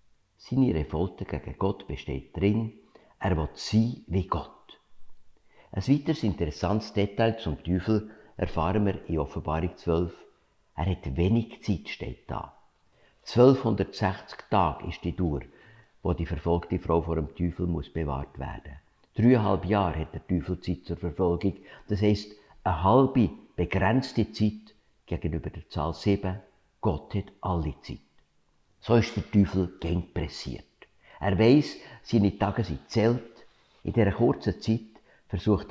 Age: 60-79